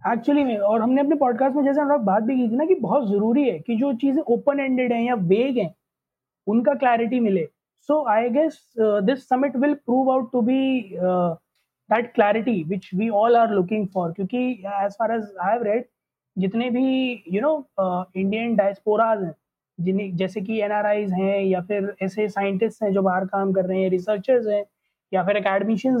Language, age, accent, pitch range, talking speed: Hindi, 20-39, native, 200-245 Hz, 190 wpm